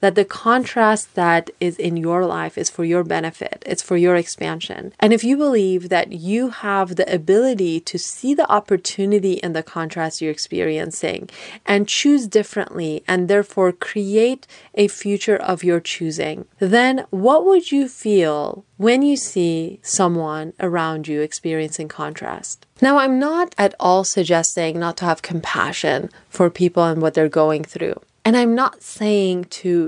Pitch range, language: 165-220 Hz, English